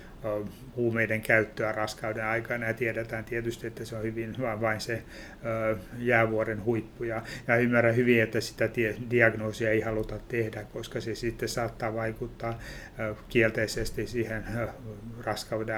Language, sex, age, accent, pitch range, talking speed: Finnish, male, 30-49, native, 110-115 Hz, 120 wpm